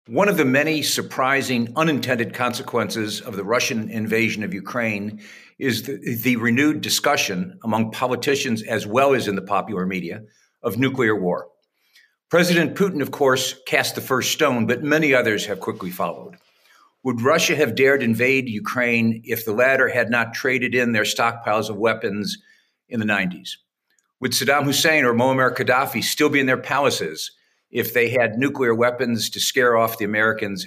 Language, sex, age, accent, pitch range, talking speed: English, male, 50-69, American, 110-140 Hz, 165 wpm